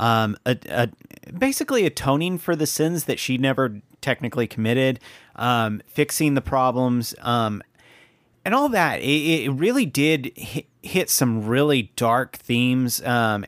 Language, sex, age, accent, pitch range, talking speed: English, male, 30-49, American, 115-135 Hz, 140 wpm